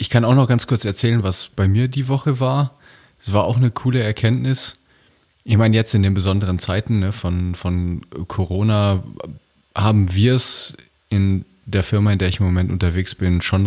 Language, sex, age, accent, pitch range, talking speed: German, male, 30-49, German, 90-110 Hz, 195 wpm